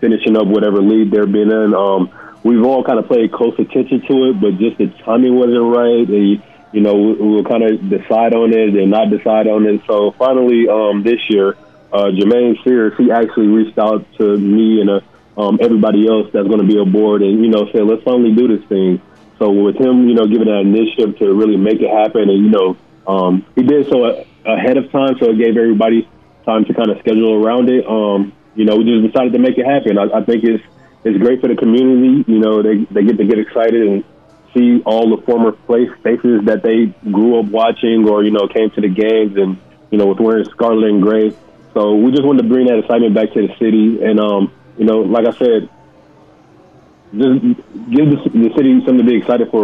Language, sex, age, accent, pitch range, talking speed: English, male, 30-49, American, 105-120 Hz, 225 wpm